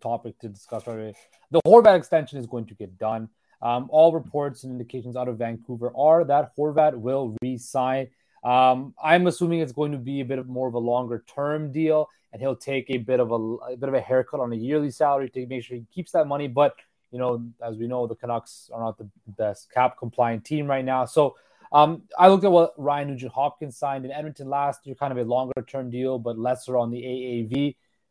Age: 20-39